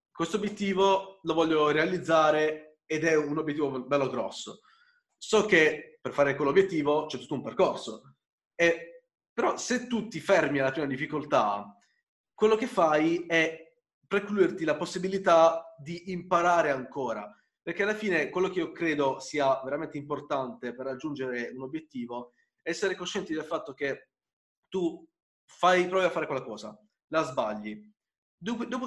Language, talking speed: Italian, 145 wpm